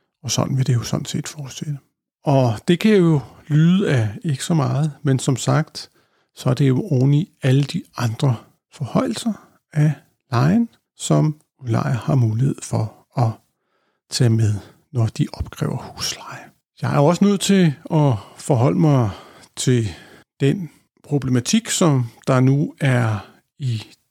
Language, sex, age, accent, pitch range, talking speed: Danish, male, 60-79, native, 130-170 Hz, 150 wpm